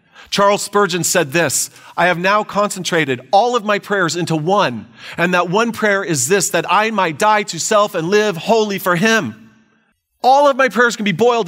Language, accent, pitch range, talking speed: English, American, 150-215 Hz, 200 wpm